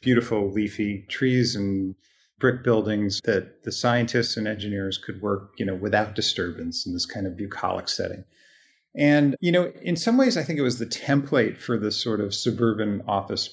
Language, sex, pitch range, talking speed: English, male, 110-130 Hz, 180 wpm